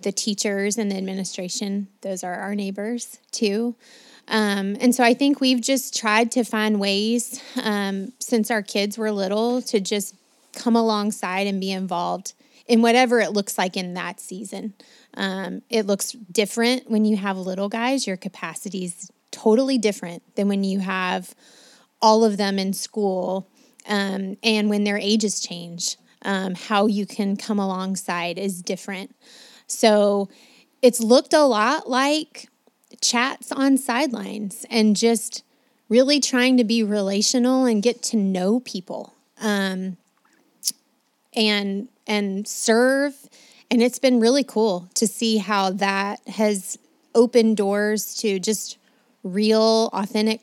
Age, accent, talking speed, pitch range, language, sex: 20-39, American, 145 wpm, 200-245 Hz, English, female